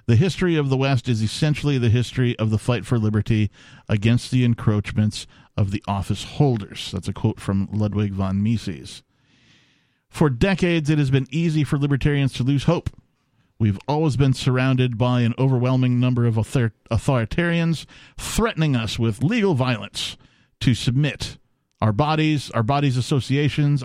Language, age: English, 50-69